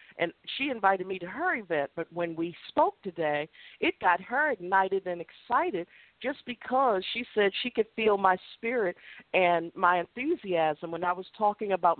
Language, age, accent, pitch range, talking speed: English, 50-69, American, 175-245 Hz, 175 wpm